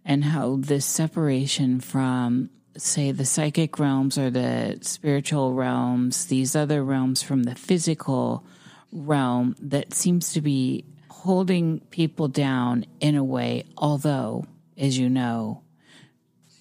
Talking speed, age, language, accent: 125 wpm, 40-59, English, American